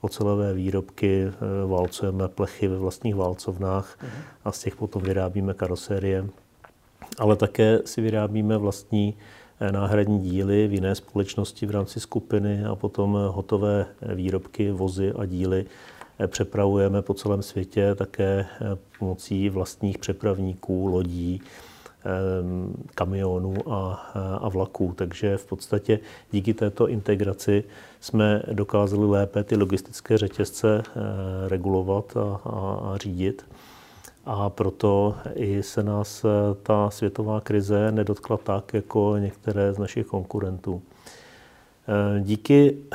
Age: 40-59